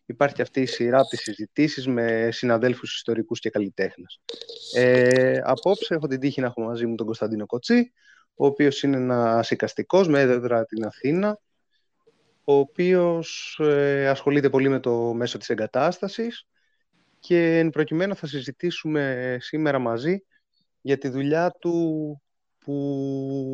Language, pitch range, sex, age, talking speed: Greek, 125-155 Hz, male, 30-49, 135 wpm